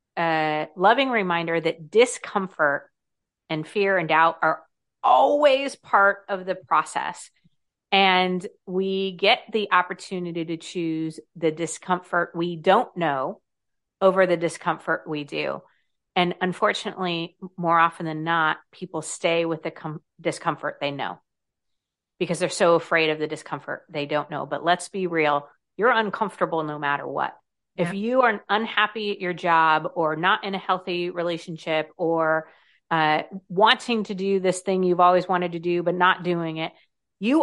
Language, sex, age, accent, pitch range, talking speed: English, female, 40-59, American, 160-195 Hz, 150 wpm